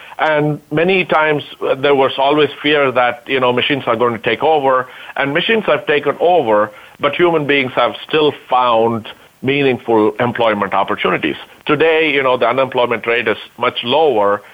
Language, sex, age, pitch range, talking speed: English, male, 50-69, 115-150 Hz, 160 wpm